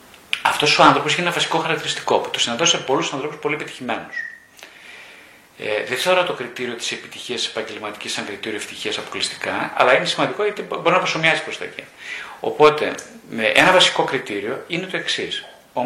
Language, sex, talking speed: Greek, male, 165 wpm